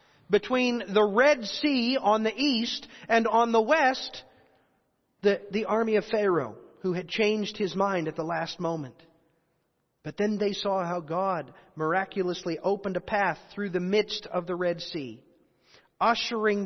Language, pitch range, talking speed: English, 180-225 Hz, 155 wpm